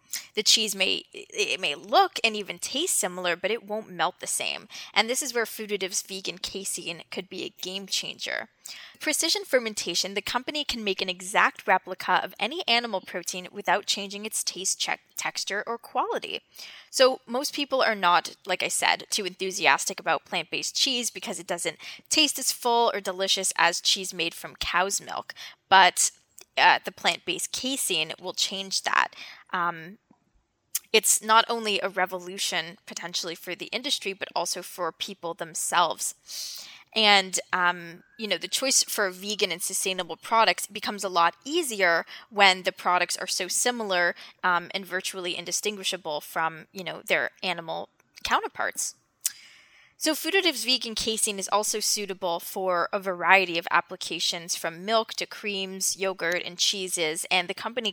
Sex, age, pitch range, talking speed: female, 10-29, 180-225 Hz, 155 wpm